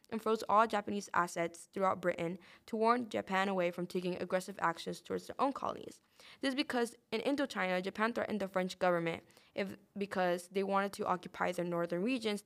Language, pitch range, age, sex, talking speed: English, 175-210 Hz, 10-29, female, 185 wpm